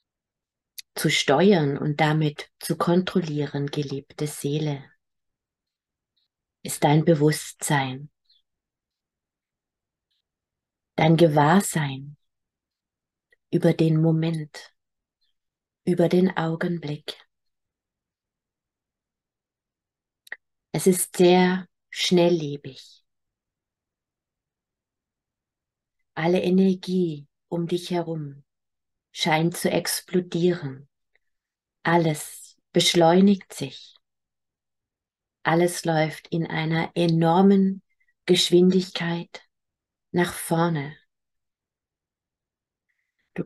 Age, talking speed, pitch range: 30-49, 60 wpm, 155-180 Hz